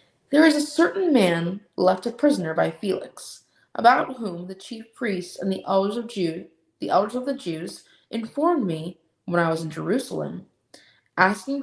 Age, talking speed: 20-39, 155 wpm